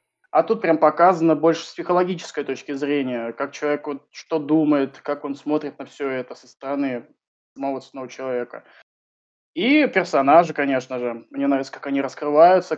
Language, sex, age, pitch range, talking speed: Russian, male, 20-39, 145-190 Hz, 155 wpm